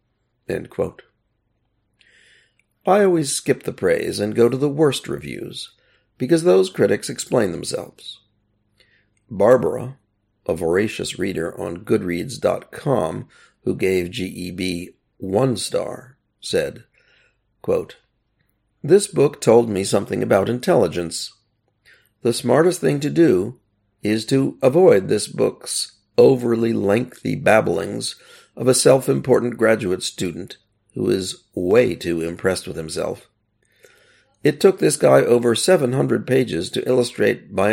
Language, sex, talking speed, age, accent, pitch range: English, male, 110 wpm, 50-69, American, 100-140 Hz